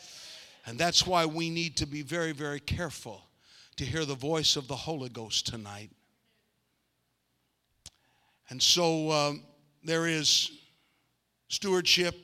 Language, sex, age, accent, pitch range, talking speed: English, male, 50-69, American, 145-180 Hz, 125 wpm